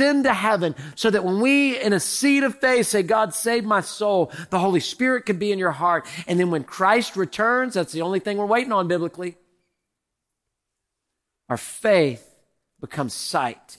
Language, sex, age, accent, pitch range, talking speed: English, male, 40-59, American, 120-200 Hz, 185 wpm